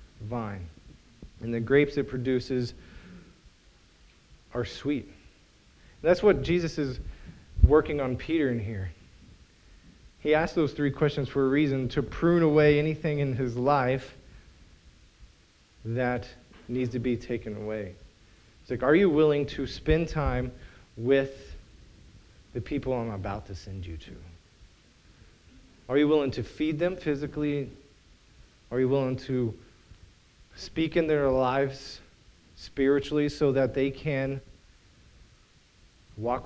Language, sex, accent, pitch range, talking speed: English, male, American, 105-145 Hz, 125 wpm